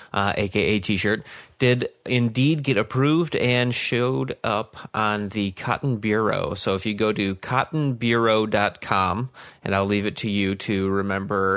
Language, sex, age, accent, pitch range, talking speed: English, male, 30-49, American, 95-115 Hz, 145 wpm